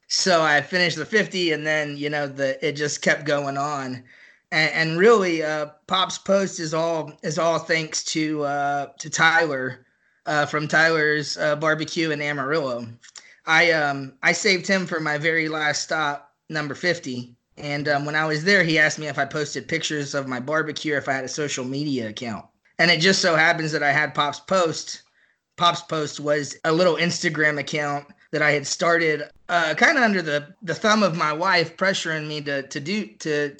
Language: English